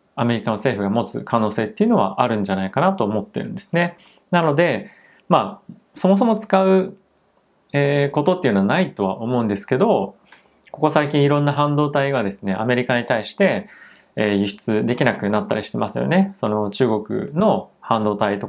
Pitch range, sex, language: 110-145 Hz, male, Japanese